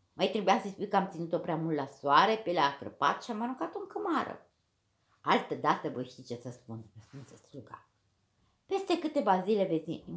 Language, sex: Romanian, female